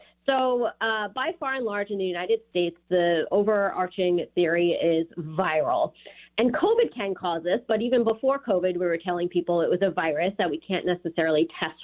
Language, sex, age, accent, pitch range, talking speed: English, female, 30-49, American, 180-230 Hz, 190 wpm